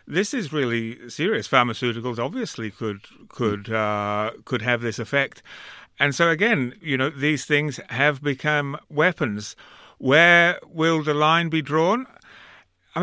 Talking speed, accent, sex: 140 wpm, British, male